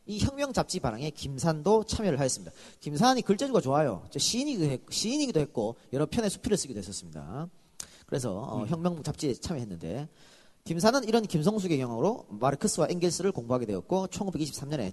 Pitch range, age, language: 145-225 Hz, 40-59, Korean